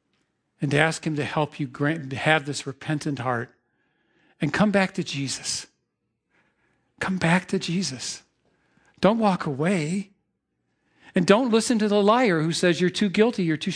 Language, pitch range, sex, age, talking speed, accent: English, 165-235 Hz, male, 40-59, 155 wpm, American